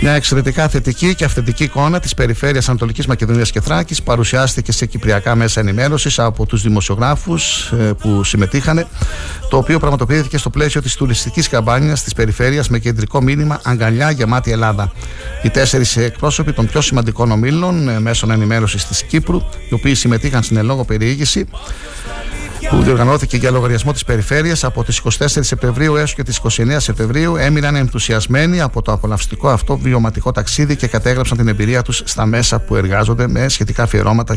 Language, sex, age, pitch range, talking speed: Greek, male, 60-79, 110-140 Hz, 155 wpm